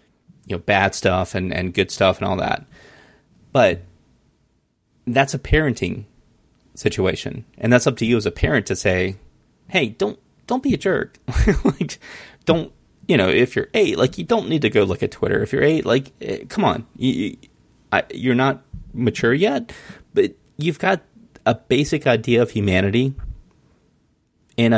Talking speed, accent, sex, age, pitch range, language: 170 wpm, American, male, 30-49, 100-135 Hz, English